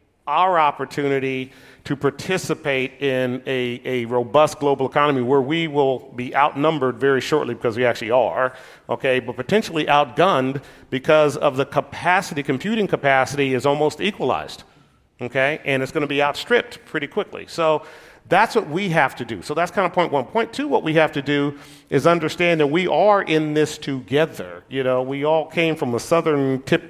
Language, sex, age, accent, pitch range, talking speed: English, male, 40-59, American, 135-180 Hz, 180 wpm